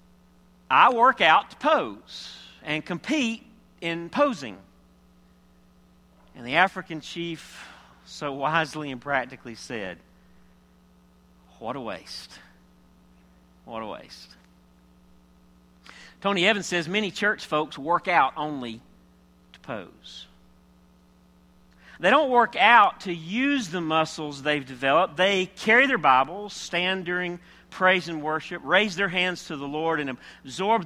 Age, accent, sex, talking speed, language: 50-69, American, male, 120 wpm, English